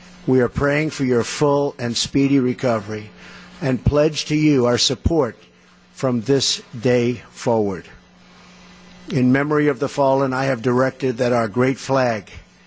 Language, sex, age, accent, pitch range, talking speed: English, male, 50-69, American, 115-140 Hz, 145 wpm